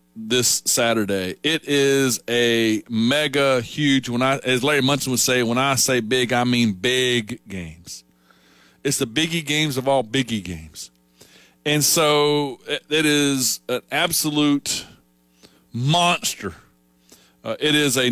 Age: 40-59